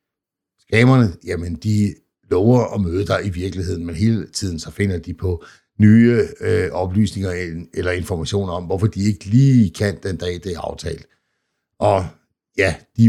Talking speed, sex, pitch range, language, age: 155 wpm, male, 85-100 Hz, Danish, 60-79